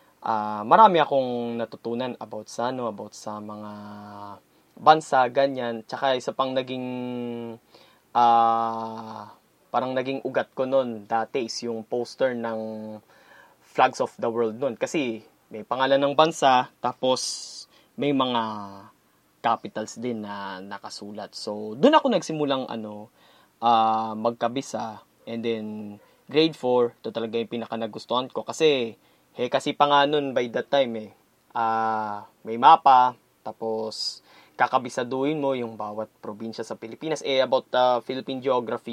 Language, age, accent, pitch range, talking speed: Filipino, 20-39, native, 110-135 Hz, 135 wpm